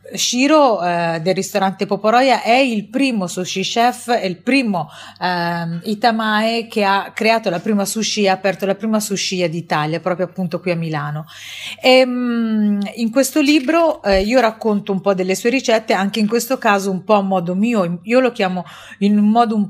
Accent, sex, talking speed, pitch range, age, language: native, female, 175 wpm, 185-230 Hz, 30-49, Italian